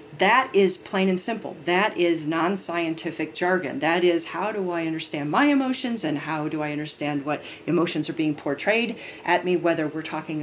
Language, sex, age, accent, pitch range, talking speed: English, female, 40-59, American, 155-190 Hz, 185 wpm